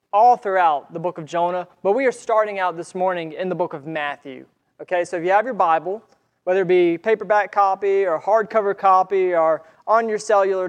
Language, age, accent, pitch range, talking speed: English, 20-39, American, 175-215 Hz, 210 wpm